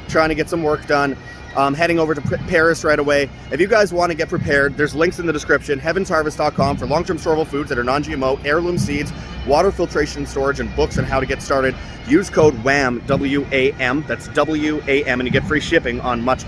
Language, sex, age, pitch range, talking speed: English, male, 30-49, 135-170 Hz, 210 wpm